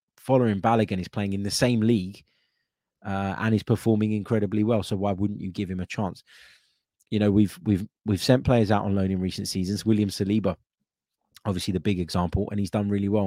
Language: English